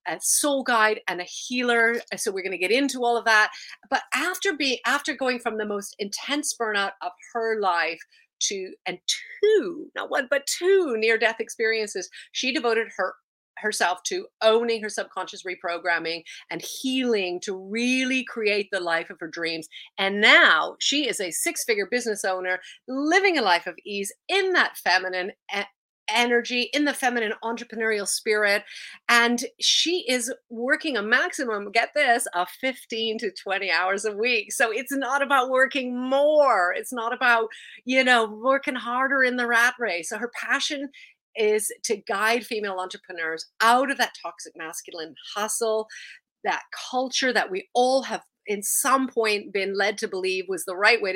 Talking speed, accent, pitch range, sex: 165 wpm, American, 205-270 Hz, female